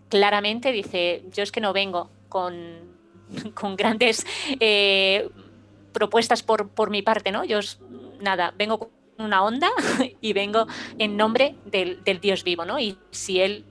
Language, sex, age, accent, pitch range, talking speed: Spanish, female, 20-39, Spanish, 180-220 Hz, 160 wpm